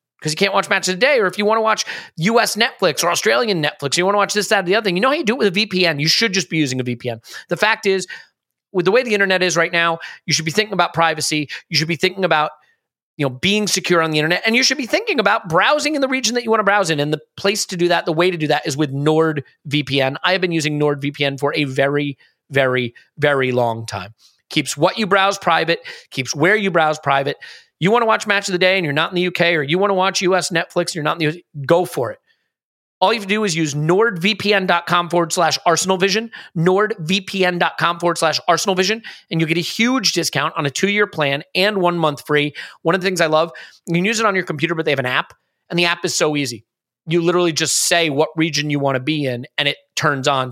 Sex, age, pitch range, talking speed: male, 30-49, 150-190 Hz, 265 wpm